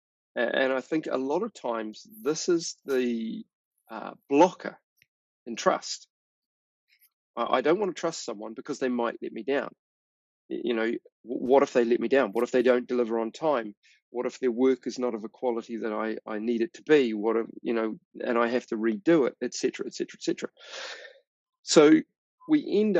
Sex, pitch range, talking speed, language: male, 115-165 Hz, 200 wpm, English